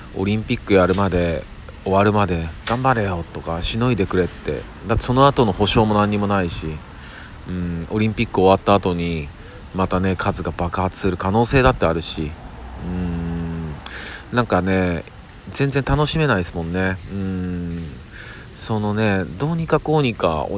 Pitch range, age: 85-110 Hz, 40-59